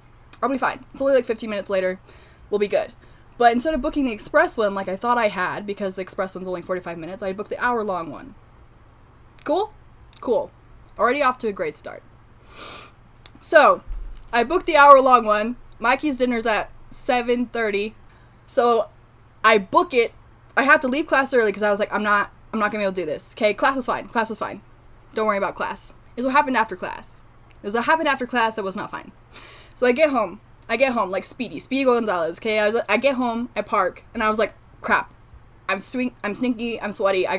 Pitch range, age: 190-250 Hz, 10-29